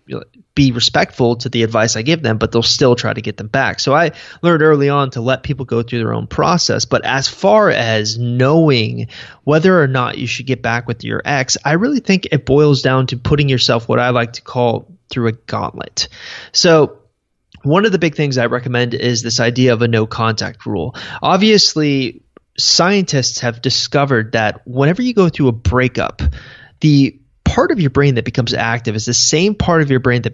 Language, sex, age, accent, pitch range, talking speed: English, male, 30-49, American, 120-155 Hz, 205 wpm